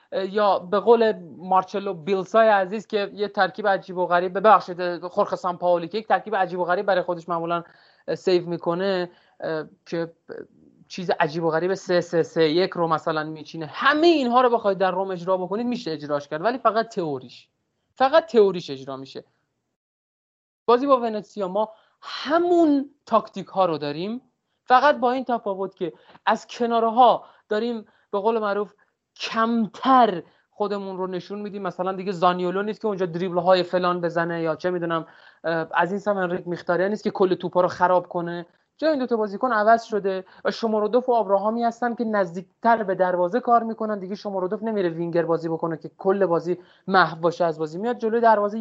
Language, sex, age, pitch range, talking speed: Persian, male, 30-49, 180-230 Hz, 170 wpm